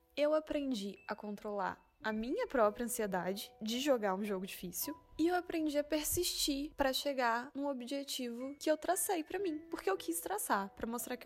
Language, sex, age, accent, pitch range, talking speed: Portuguese, female, 10-29, Brazilian, 195-295 Hz, 180 wpm